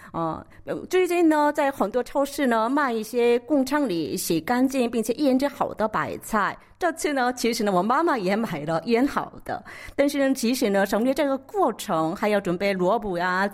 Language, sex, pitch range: Chinese, female, 205-290 Hz